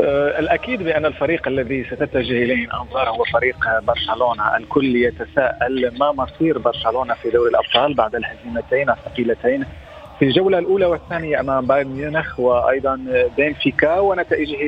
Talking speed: 125 wpm